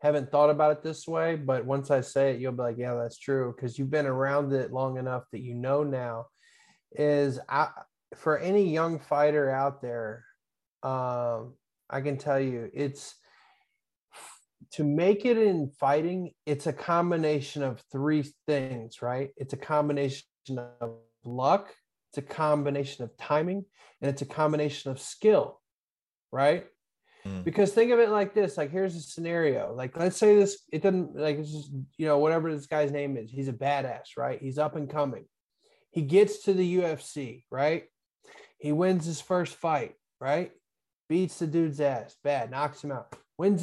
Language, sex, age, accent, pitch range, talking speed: English, male, 20-39, American, 135-165 Hz, 170 wpm